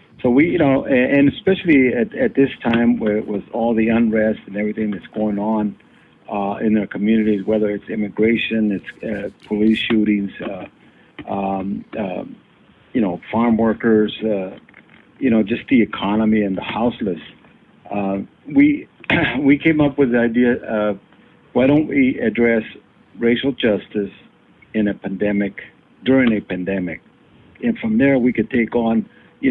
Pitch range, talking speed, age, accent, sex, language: 105-120 Hz, 155 wpm, 60-79, American, male, English